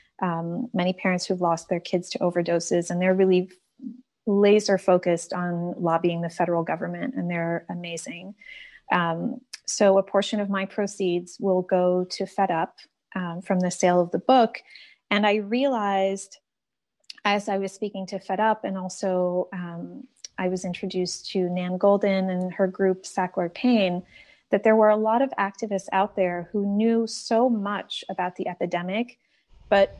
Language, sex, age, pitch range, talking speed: English, female, 30-49, 180-210 Hz, 165 wpm